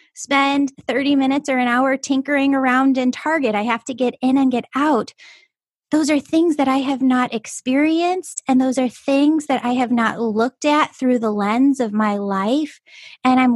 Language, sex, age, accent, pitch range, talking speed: English, female, 10-29, American, 235-285 Hz, 195 wpm